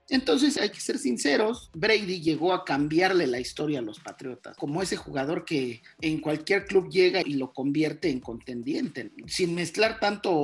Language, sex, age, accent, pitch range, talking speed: Spanish, male, 40-59, Mexican, 140-215 Hz, 175 wpm